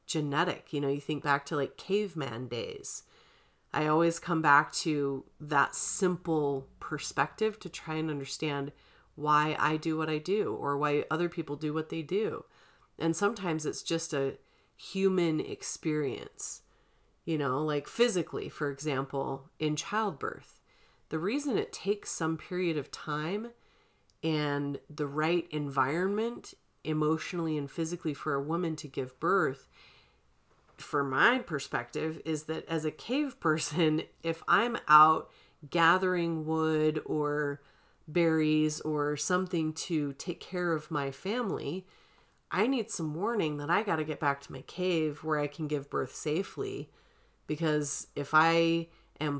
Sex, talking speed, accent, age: female, 145 wpm, American, 30-49